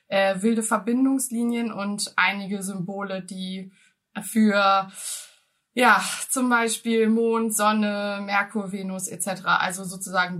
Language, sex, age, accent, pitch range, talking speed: German, female, 20-39, German, 190-235 Hz, 105 wpm